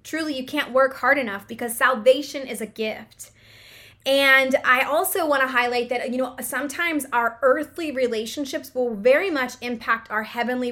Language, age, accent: English, 20-39, American